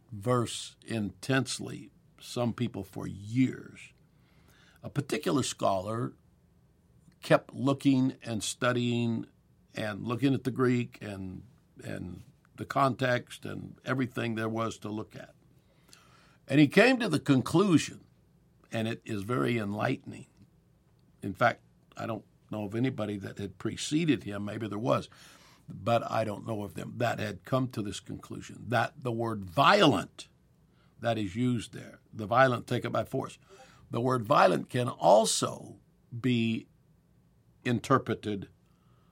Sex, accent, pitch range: male, American, 105-130 Hz